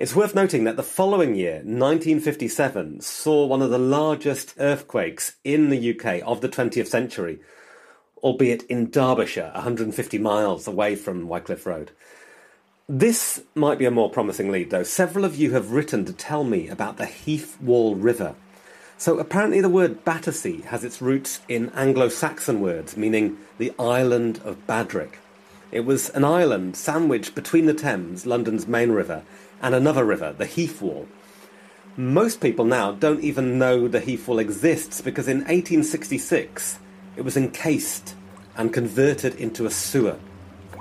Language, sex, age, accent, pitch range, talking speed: English, male, 30-49, British, 105-155 Hz, 155 wpm